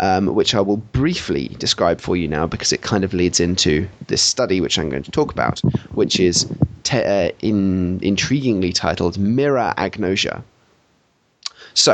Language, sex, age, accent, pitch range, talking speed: English, male, 20-39, British, 90-105 Hz, 165 wpm